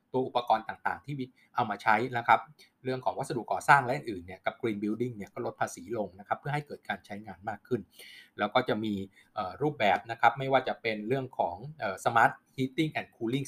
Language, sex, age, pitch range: Thai, male, 20-39, 110-135 Hz